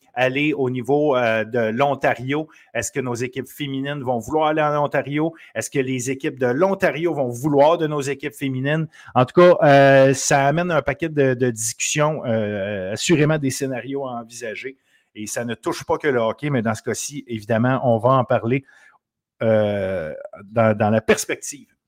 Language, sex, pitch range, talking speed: French, male, 120-155 Hz, 185 wpm